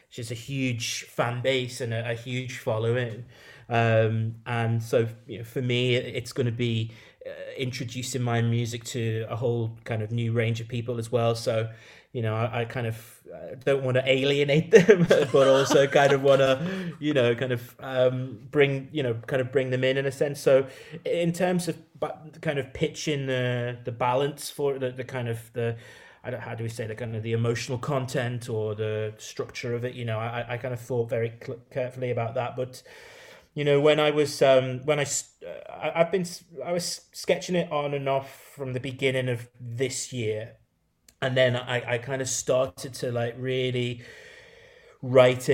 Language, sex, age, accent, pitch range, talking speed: English, male, 30-49, British, 115-140 Hz, 205 wpm